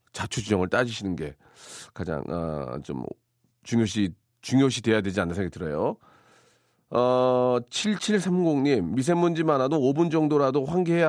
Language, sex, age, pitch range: Korean, male, 40-59, 100-155 Hz